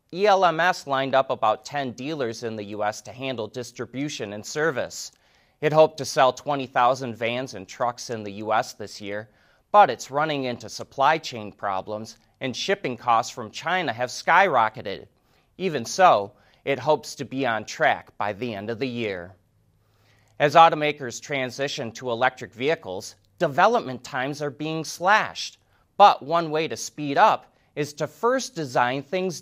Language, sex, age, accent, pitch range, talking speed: English, male, 30-49, American, 115-150 Hz, 155 wpm